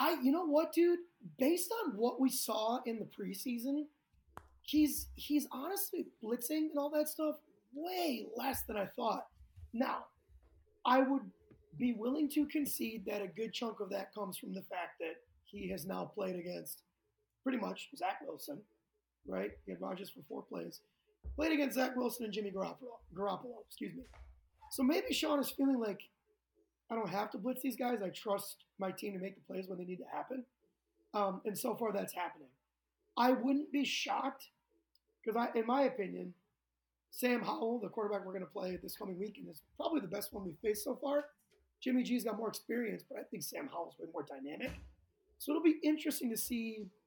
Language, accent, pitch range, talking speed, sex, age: English, American, 205-300 Hz, 190 wpm, male, 20-39